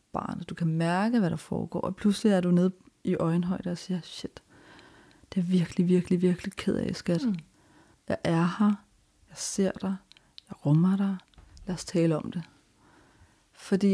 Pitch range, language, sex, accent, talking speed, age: 170-195 Hz, Danish, female, native, 170 wpm, 40-59